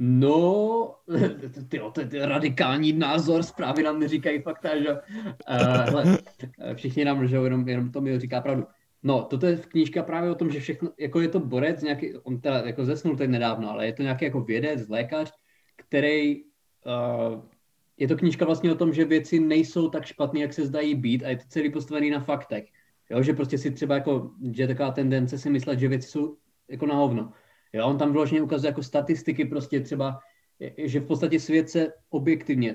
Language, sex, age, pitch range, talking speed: Czech, male, 20-39, 125-150 Hz, 190 wpm